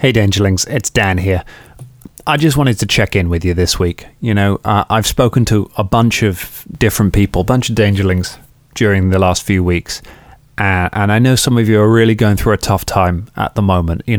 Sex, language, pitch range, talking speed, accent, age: male, English, 100-120 Hz, 225 wpm, British, 20-39